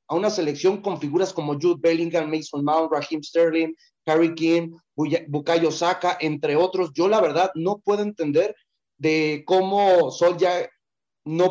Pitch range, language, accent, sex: 155-190 Hz, Spanish, Mexican, male